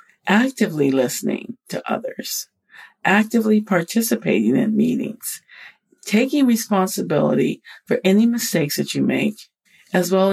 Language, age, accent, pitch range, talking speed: English, 50-69, American, 160-220 Hz, 105 wpm